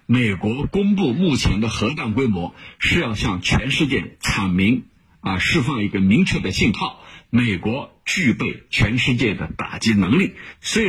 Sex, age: male, 50-69